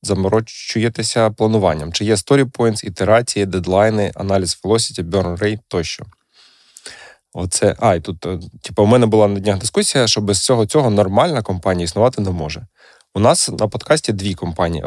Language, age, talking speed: Ukrainian, 20-39, 155 wpm